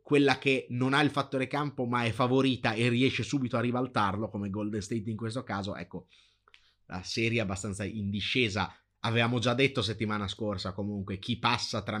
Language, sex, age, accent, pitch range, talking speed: Italian, male, 30-49, native, 105-125 Hz, 185 wpm